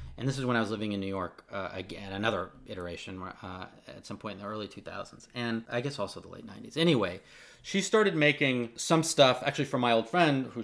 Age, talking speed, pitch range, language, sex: 30-49, 230 wpm, 105-135 Hz, English, male